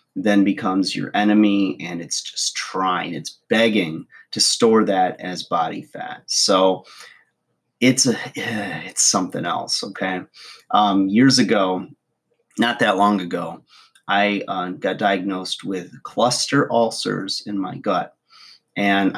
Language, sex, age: English, male, 30-49